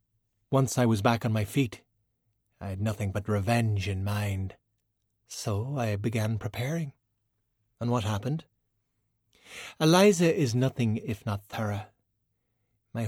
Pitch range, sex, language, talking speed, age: 105-125 Hz, male, English, 130 wpm, 30-49